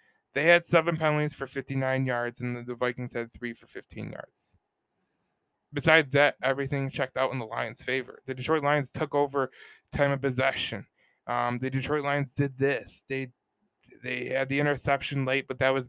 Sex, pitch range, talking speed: male, 130-150 Hz, 180 wpm